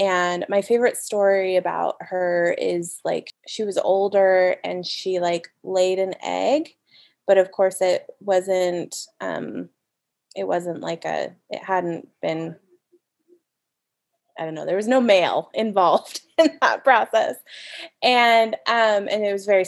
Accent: American